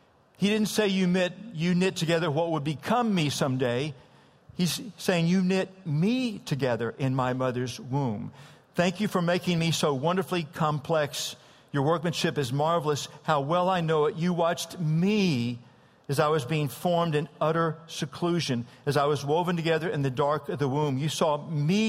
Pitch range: 140-175 Hz